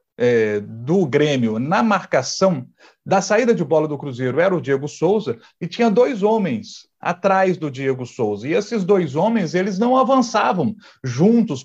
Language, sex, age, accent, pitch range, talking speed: Portuguese, male, 40-59, Brazilian, 165-230 Hz, 155 wpm